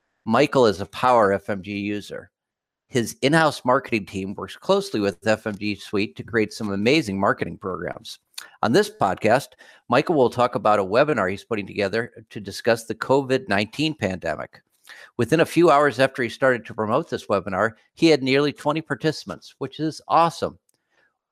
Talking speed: 165 wpm